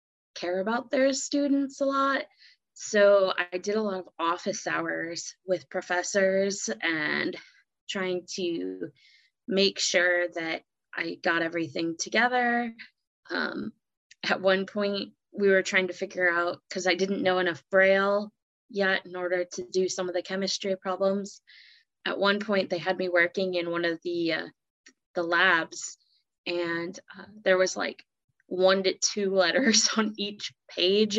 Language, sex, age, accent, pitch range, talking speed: English, female, 20-39, American, 175-205 Hz, 150 wpm